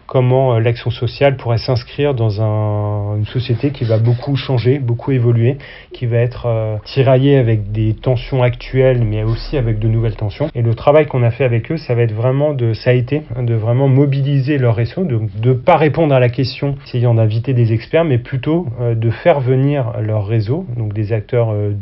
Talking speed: 205 wpm